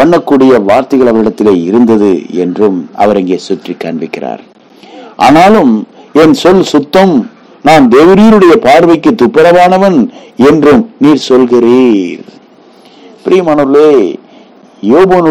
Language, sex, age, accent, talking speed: English, male, 50-69, Indian, 70 wpm